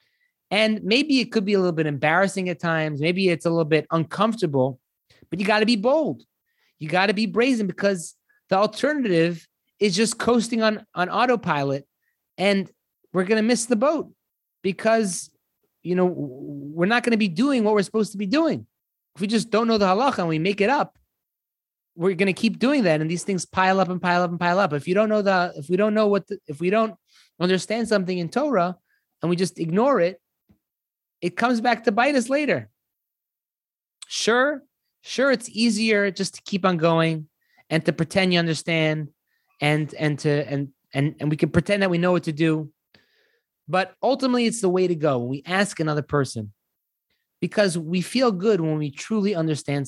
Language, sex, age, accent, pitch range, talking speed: English, male, 30-49, American, 160-220 Hz, 200 wpm